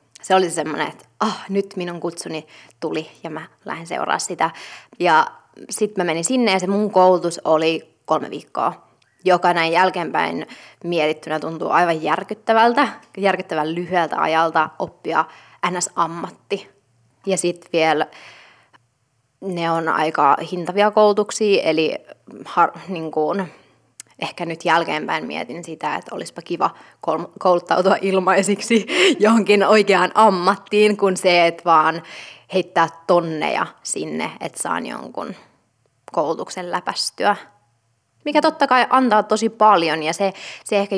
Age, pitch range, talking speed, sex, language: 20-39, 160-200 Hz, 125 wpm, female, Finnish